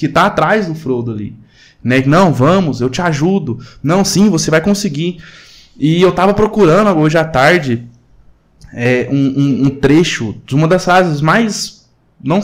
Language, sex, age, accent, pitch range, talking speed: Portuguese, male, 20-39, Brazilian, 150-205 Hz, 170 wpm